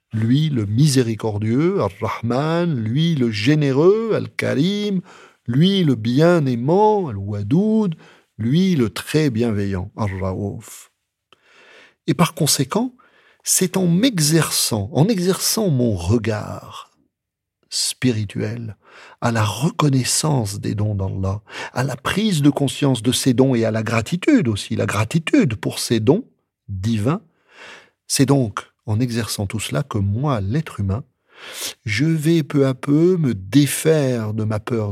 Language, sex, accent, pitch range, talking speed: French, male, French, 110-155 Hz, 125 wpm